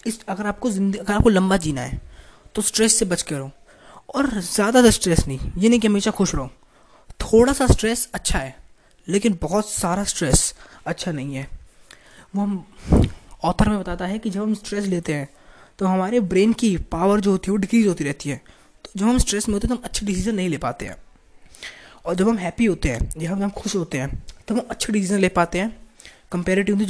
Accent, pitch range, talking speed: native, 165-215 Hz, 215 wpm